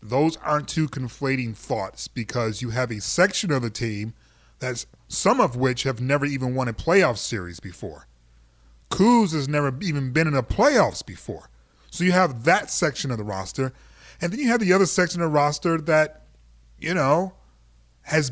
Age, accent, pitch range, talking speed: 30-49, American, 125-155 Hz, 185 wpm